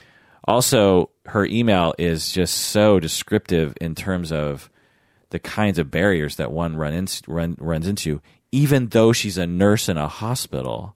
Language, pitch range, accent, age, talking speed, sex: English, 75-100 Hz, American, 30-49, 160 wpm, male